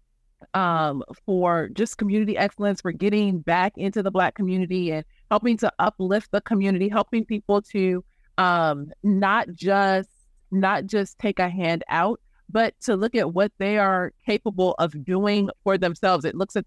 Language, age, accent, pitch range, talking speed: English, 30-49, American, 160-200 Hz, 160 wpm